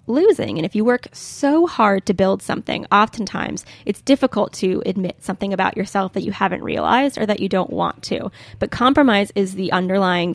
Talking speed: 190 wpm